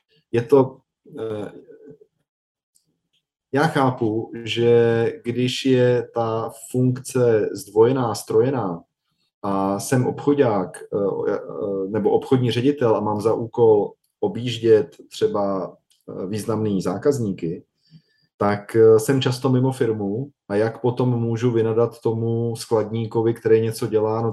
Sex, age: male, 20-39